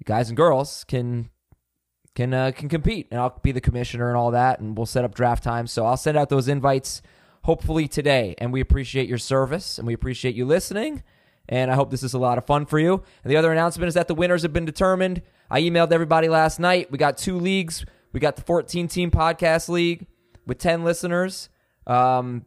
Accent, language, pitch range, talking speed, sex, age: American, English, 125-165 Hz, 220 wpm, male, 20-39